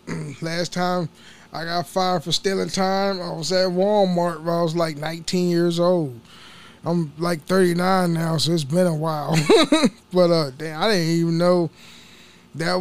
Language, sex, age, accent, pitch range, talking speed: English, male, 20-39, American, 160-195 Hz, 170 wpm